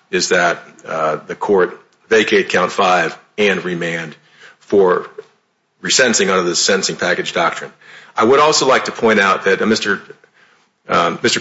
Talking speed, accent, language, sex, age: 140 wpm, American, English, male, 50-69